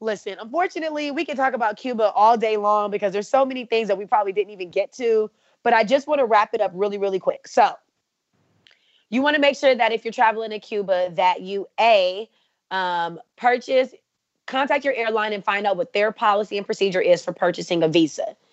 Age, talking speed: 20-39, 215 wpm